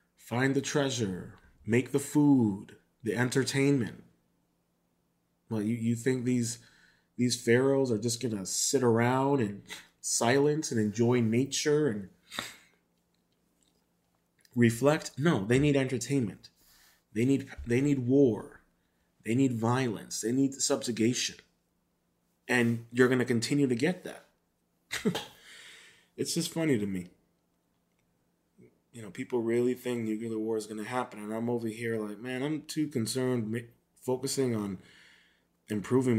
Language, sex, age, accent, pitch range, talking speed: English, male, 30-49, American, 105-130 Hz, 135 wpm